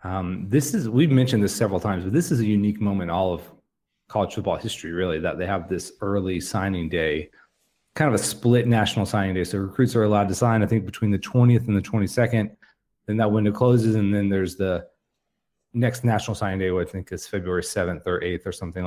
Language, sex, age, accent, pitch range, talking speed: English, male, 30-49, American, 95-120 Hz, 225 wpm